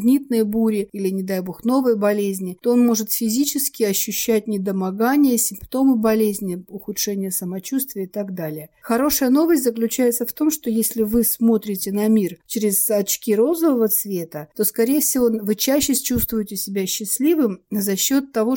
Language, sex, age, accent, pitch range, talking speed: Russian, female, 50-69, native, 195-235 Hz, 150 wpm